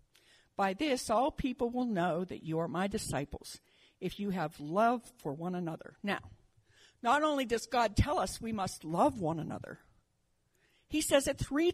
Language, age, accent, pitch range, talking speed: English, 60-79, American, 170-250 Hz, 175 wpm